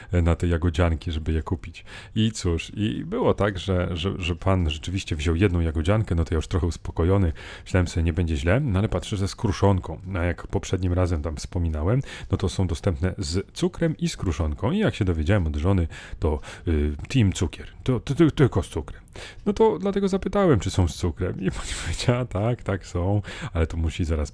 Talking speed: 210 wpm